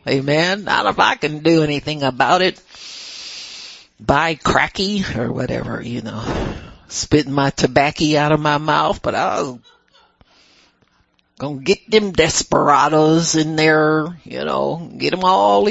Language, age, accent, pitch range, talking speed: English, 60-79, American, 125-160 Hz, 135 wpm